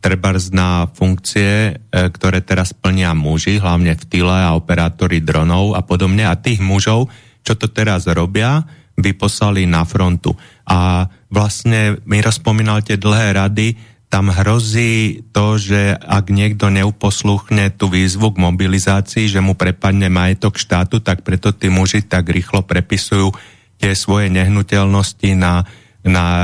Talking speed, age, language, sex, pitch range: 135 wpm, 30-49, Slovak, male, 90-105 Hz